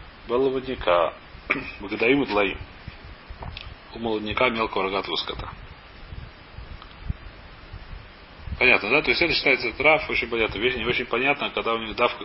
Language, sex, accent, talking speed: Russian, male, native, 120 wpm